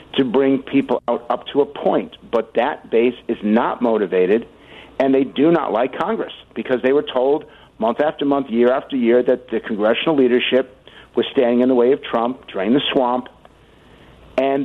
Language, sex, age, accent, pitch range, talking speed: English, male, 50-69, American, 115-140 Hz, 185 wpm